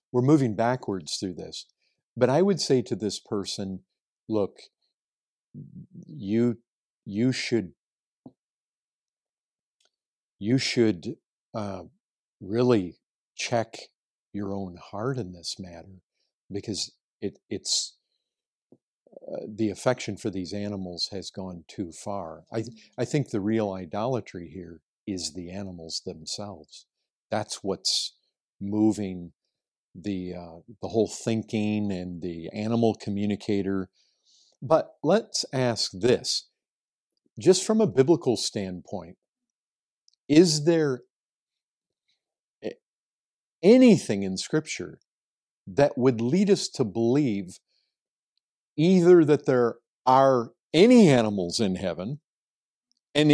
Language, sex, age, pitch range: English, male, 50-69, 95-130 Hz